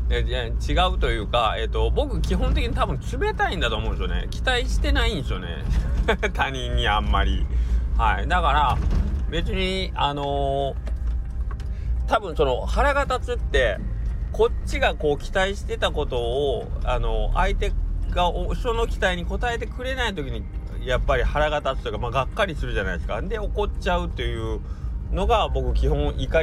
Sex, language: male, Japanese